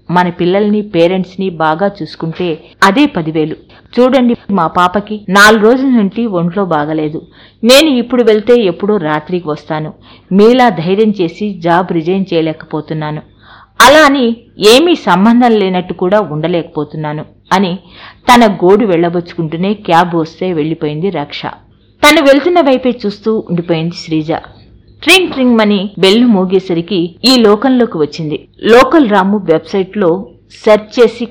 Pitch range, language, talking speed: 170-235 Hz, Telugu, 115 wpm